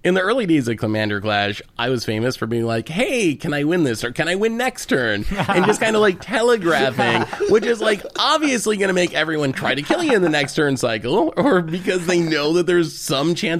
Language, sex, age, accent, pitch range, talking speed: English, male, 30-49, American, 115-175 Hz, 245 wpm